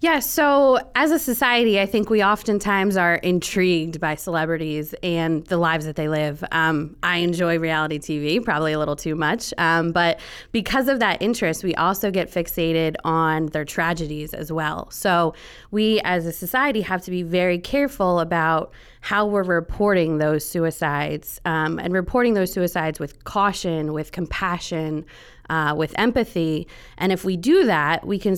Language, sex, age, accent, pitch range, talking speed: English, female, 20-39, American, 160-195 Hz, 165 wpm